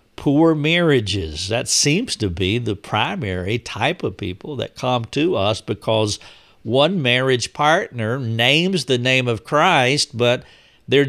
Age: 60-79